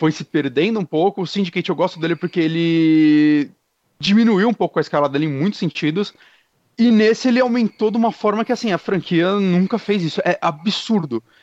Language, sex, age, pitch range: Portuguese, male, 30-49, 160-215 Hz